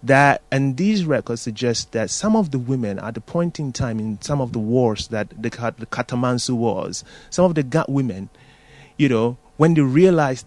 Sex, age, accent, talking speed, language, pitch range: male, 30-49, Nigerian, 190 wpm, English, 115-150 Hz